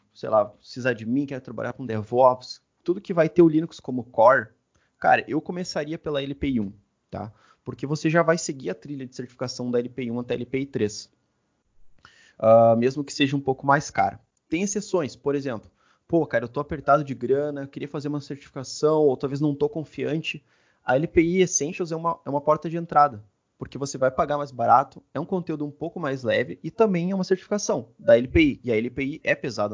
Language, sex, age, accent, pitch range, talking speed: Portuguese, male, 20-39, Brazilian, 125-160 Hz, 210 wpm